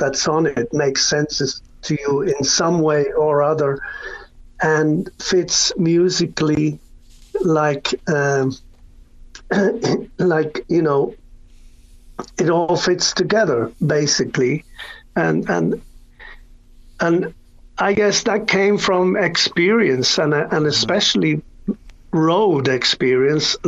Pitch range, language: 145-170 Hz, English